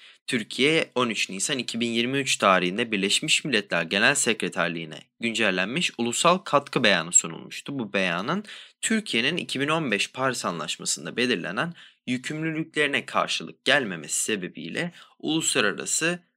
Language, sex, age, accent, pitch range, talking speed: Turkish, male, 20-39, native, 105-160 Hz, 95 wpm